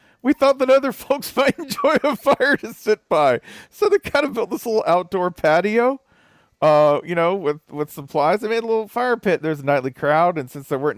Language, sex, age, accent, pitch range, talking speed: English, male, 40-59, American, 135-200 Hz, 225 wpm